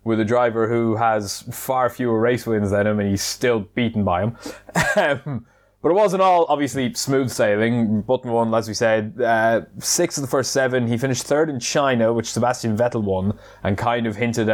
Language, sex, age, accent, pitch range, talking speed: English, male, 20-39, British, 110-135 Hz, 200 wpm